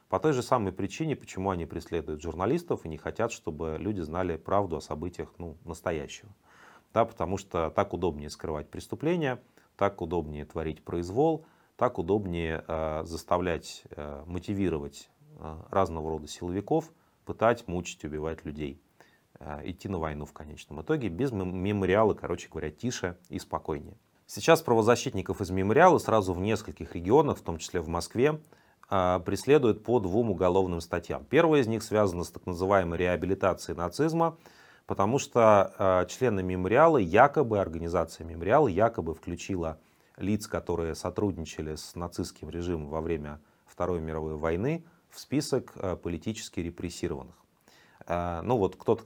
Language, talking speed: Russian, 135 wpm